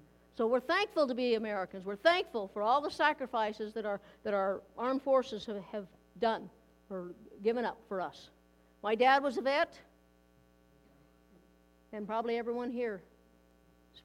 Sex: female